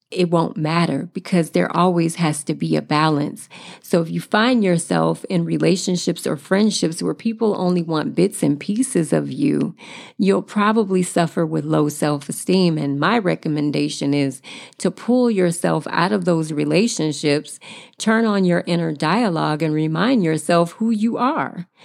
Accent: American